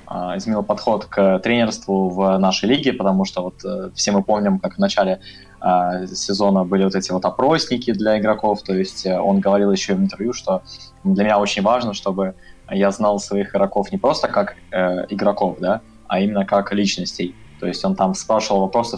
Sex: male